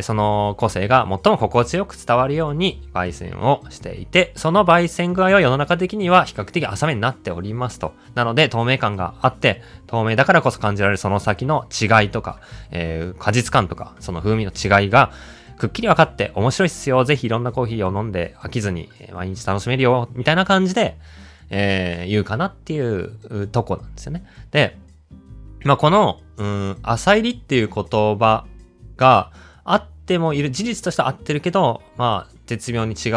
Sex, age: male, 20-39